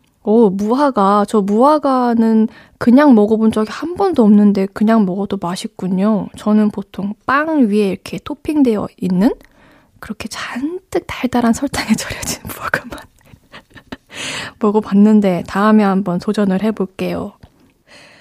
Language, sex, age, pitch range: Korean, female, 20-39, 210-270 Hz